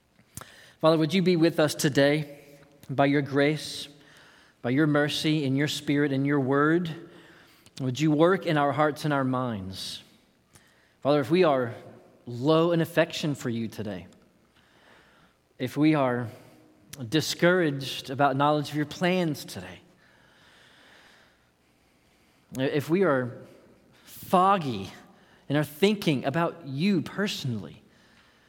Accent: American